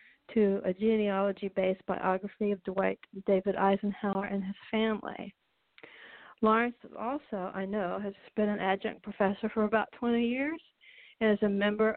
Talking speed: 140 wpm